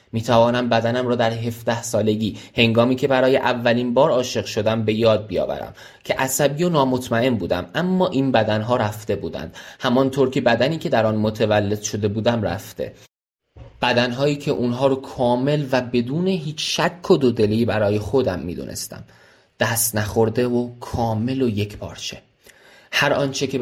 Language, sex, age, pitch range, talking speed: Persian, male, 20-39, 110-135 Hz, 150 wpm